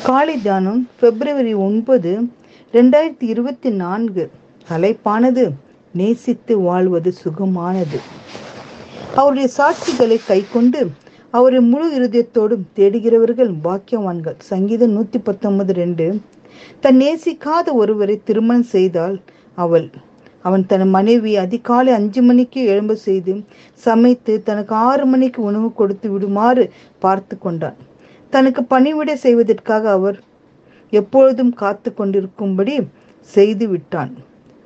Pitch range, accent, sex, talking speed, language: 195-250 Hz, native, female, 95 wpm, Tamil